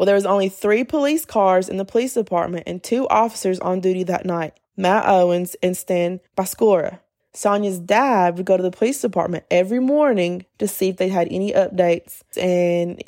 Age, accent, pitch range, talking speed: 20-39, American, 180-215 Hz, 190 wpm